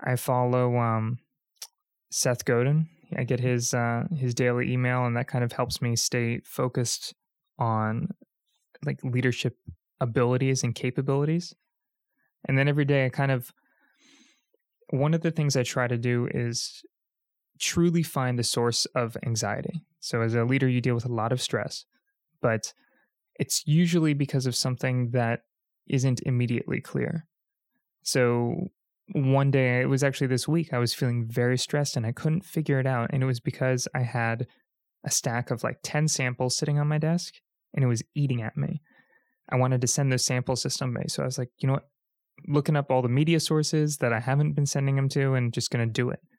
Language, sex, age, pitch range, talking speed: English, male, 20-39, 125-150 Hz, 185 wpm